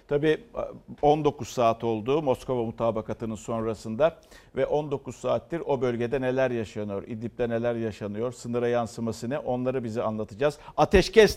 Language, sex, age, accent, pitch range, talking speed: Turkish, male, 50-69, native, 115-150 Hz, 125 wpm